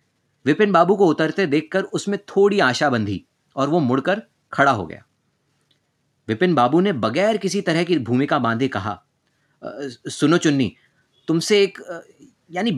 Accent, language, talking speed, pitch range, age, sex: native, Hindi, 140 wpm, 130-195 Hz, 30-49, male